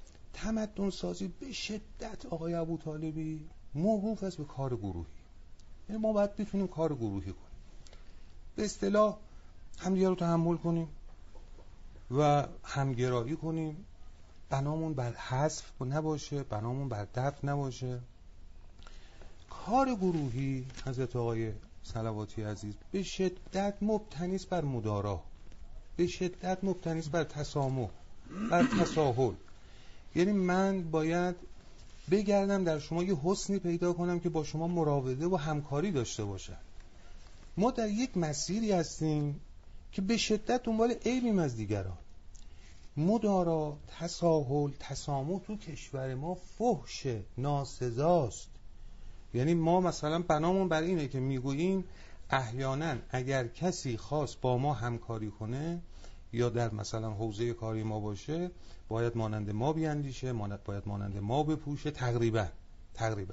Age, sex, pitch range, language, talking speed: 40-59, male, 105-170 Hz, Persian, 115 wpm